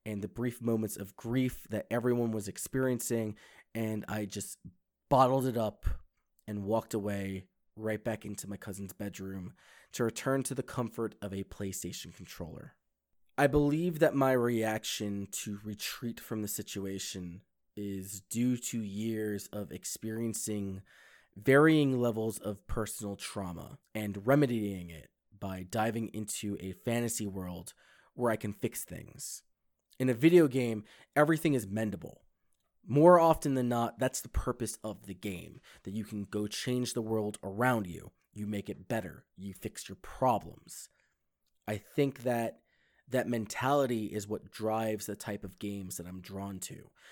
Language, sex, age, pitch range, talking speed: English, male, 20-39, 100-120 Hz, 150 wpm